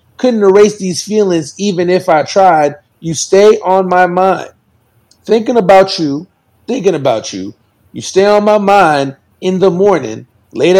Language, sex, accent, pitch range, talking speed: English, male, American, 150-225 Hz, 155 wpm